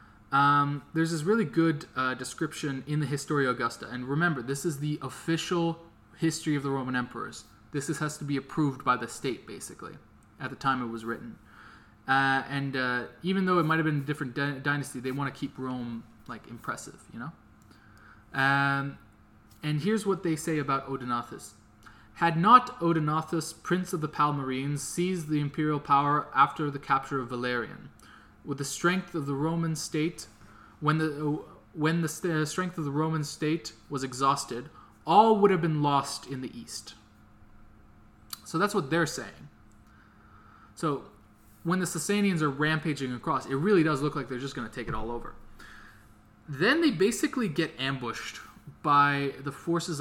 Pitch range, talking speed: 125-160 Hz, 175 wpm